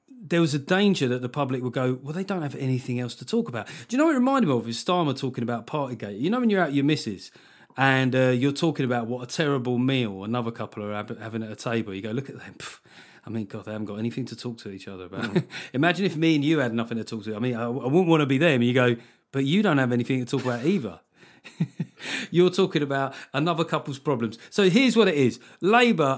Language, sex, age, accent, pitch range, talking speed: English, male, 30-49, British, 115-160 Hz, 260 wpm